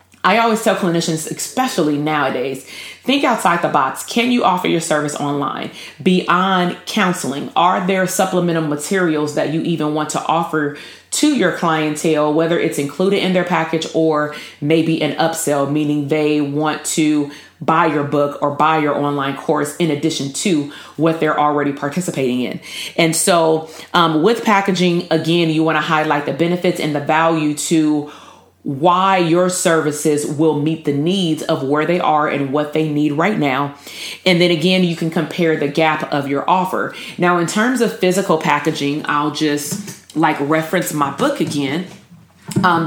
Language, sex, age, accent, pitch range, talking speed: English, female, 30-49, American, 150-180 Hz, 165 wpm